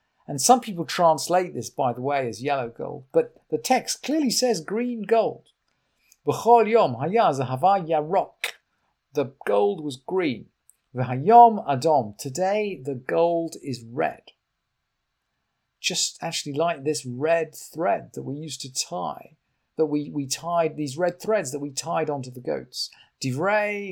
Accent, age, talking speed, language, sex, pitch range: British, 50-69, 135 wpm, English, male, 135-195 Hz